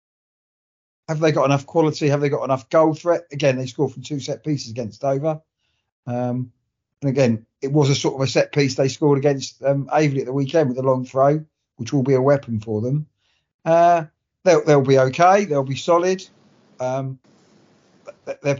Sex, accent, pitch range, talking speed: male, British, 130-160 Hz, 195 wpm